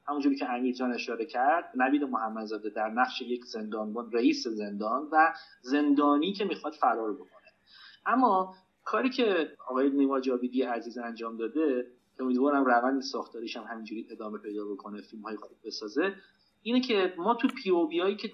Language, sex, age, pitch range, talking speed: Persian, male, 40-59, 125-205 Hz, 160 wpm